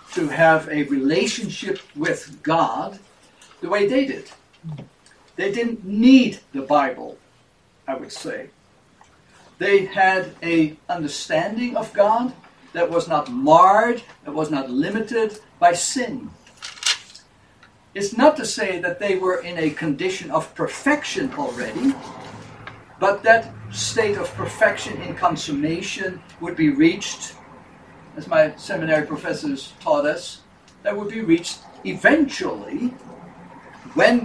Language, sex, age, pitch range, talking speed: English, male, 60-79, 165-260 Hz, 120 wpm